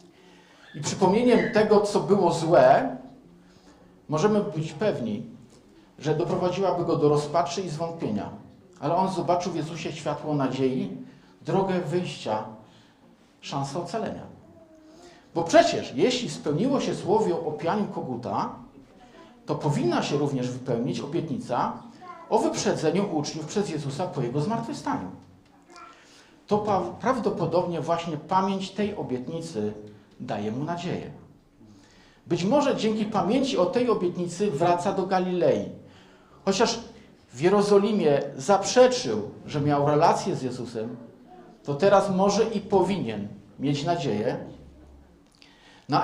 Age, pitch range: 50-69, 140-195 Hz